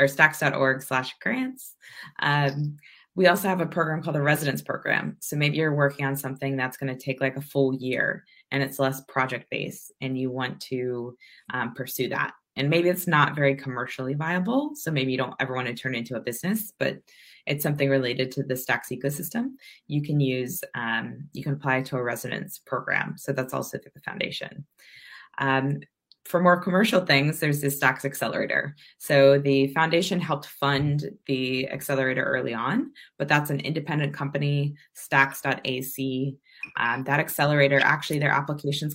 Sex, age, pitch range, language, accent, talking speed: female, 20-39, 130-150 Hz, English, American, 170 wpm